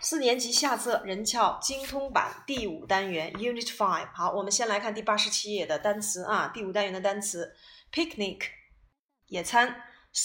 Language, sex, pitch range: Chinese, female, 195-250 Hz